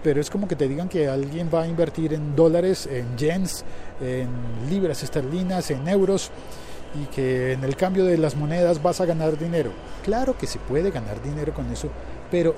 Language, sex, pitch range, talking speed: Spanish, male, 115-155 Hz, 195 wpm